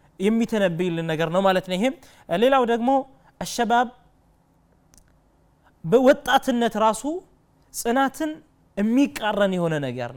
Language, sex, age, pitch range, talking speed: Amharic, male, 30-49, 190-245 Hz, 90 wpm